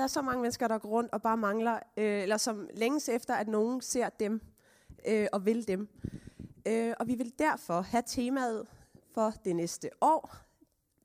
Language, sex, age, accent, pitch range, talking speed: Danish, female, 20-39, native, 205-255 Hz, 190 wpm